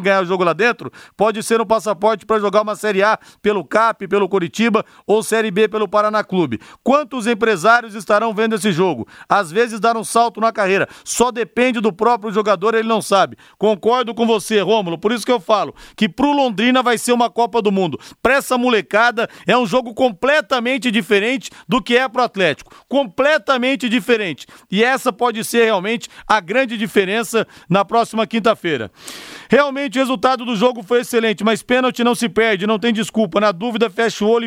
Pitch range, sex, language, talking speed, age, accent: 205-245 Hz, male, Portuguese, 190 wpm, 40-59, Brazilian